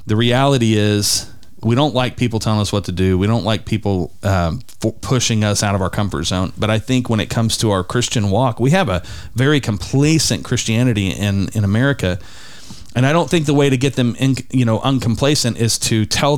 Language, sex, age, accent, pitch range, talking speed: English, male, 40-59, American, 105-130 Hz, 220 wpm